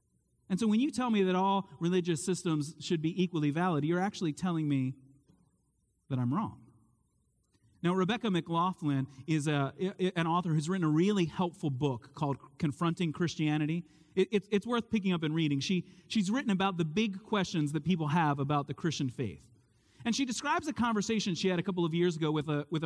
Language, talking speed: English, 195 wpm